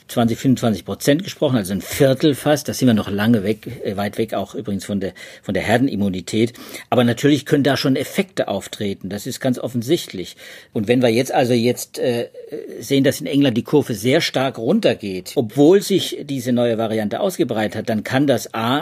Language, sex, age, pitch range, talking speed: German, male, 50-69, 110-135 Hz, 190 wpm